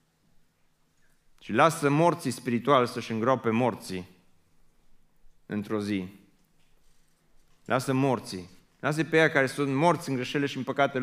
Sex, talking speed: male, 120 wpm